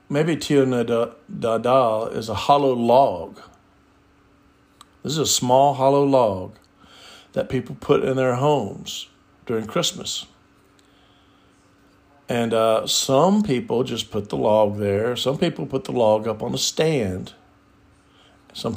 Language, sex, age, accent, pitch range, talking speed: English, male, 50-69, American, 100-135 Hz, 125 wpm